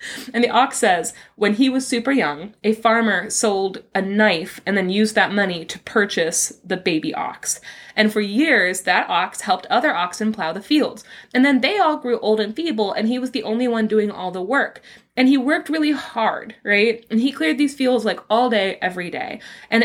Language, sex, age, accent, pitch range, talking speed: English, female, 20-39, American, 200-250 Hz, 210 wpm